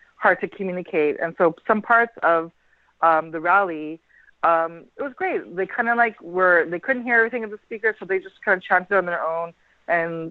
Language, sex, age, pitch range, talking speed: English, female, 30-49, 165-205 Hz, 215 wpm